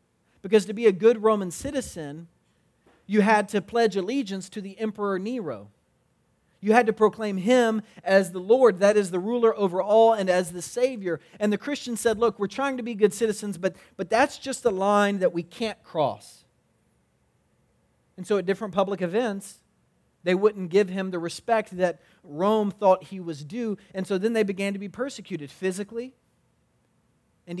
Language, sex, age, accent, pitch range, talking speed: English, male, 40-59, American, 180-220 Hz, 180 wpm